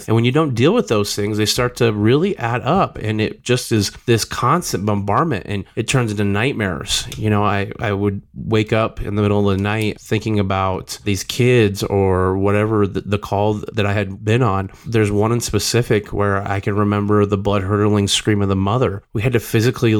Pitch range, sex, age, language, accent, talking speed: 100-115 Hz, male, 30-49, English, American, 215 wpm